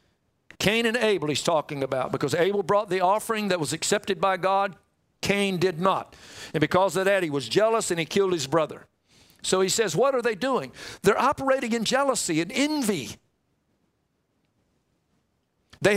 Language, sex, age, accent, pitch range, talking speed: English, male, 60-79, American, 195-270 Hz, 170 wpm